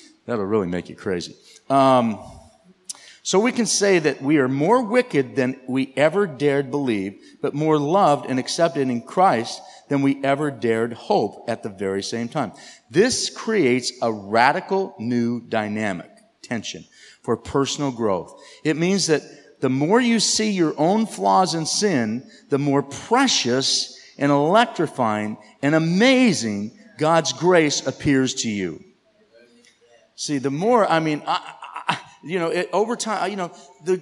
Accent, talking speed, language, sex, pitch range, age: American, 150 wpm, English, male, 135-195 Hz, 50-69